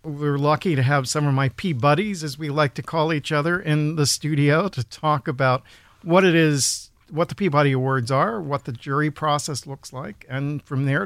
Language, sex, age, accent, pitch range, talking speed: English, male, 50-69, American, 125-155 Hz, 205 wpm